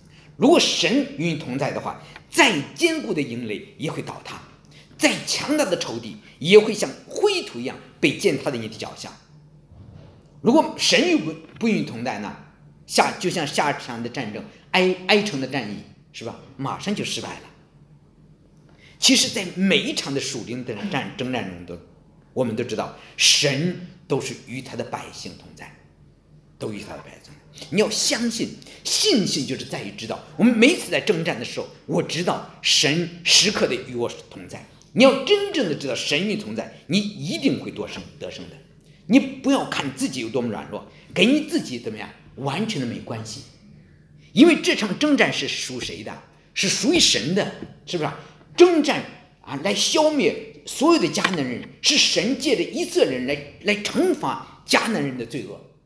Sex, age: male, 50-69